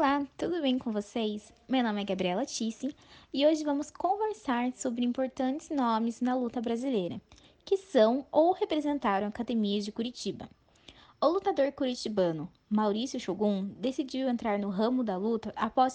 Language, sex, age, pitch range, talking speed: Portuguese, female, 10-29, 215-280 Hz, 145 wpm